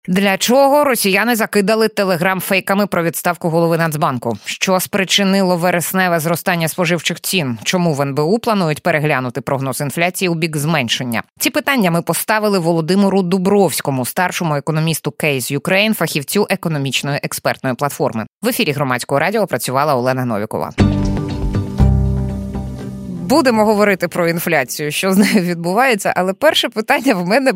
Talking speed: 130 wpm